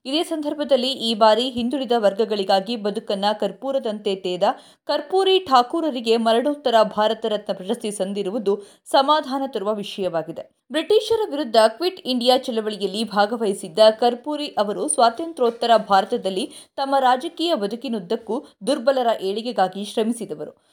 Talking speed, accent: 100 wpm, native